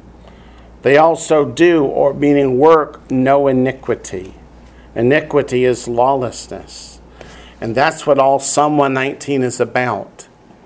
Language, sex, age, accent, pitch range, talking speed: English, male, 50-69, American, 125-155 Hz, 105 wpm